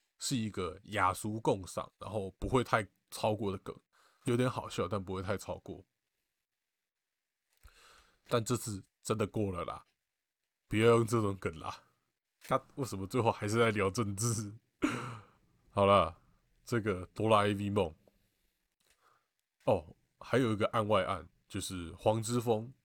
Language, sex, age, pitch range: Chinese, male, 20-39, 95-115 Hz